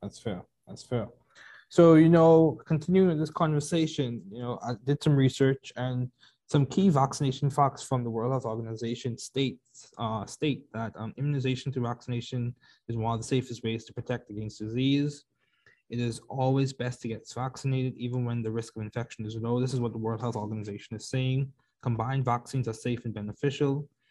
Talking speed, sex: 185 wpm, male